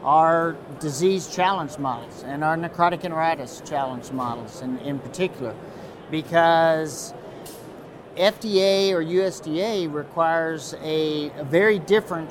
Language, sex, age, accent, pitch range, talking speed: English, male, 50-69, American, 150-175 Hz, 105 wpm